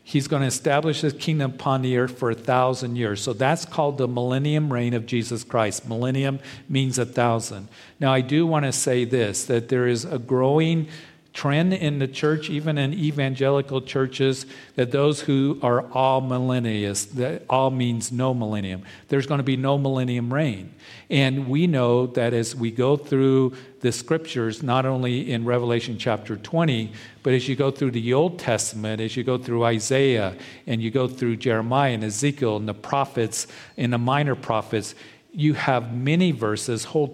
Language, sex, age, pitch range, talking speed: English, male, 50-69, 120-140 Hz, 180 wpm